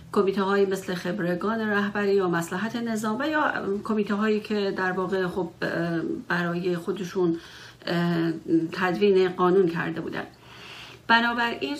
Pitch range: 185-215 Hz